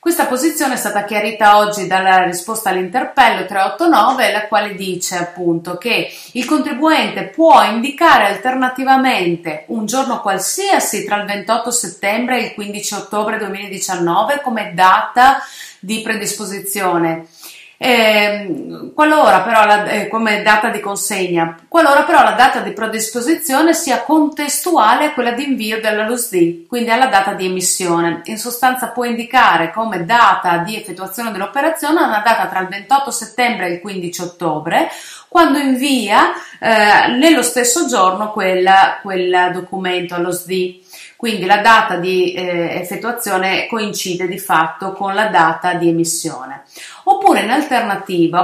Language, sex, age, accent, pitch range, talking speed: Italian, female, 30-49, native, 185-255 Hz, 135 wpm